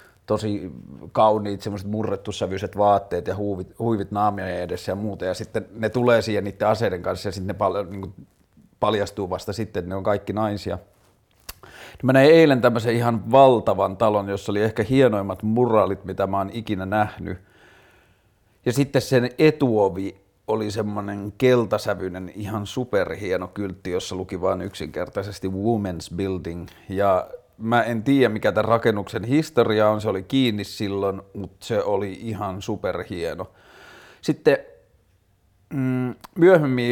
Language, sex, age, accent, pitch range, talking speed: Finnish, male, 30-49, native, 95-115 Hz, 135 wpm